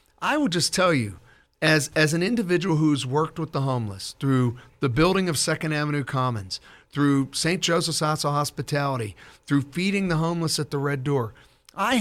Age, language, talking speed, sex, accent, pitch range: 50-69, English, 180 wpm, male, American, 135-175 Hz